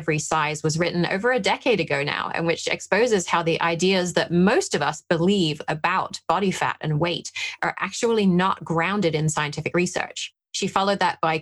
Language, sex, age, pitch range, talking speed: English, female, 30-49, 155-190 Hz, 190 wpm